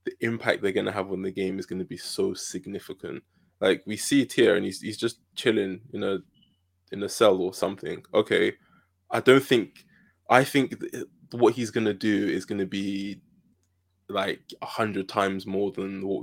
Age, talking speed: 20-39, 200 wpm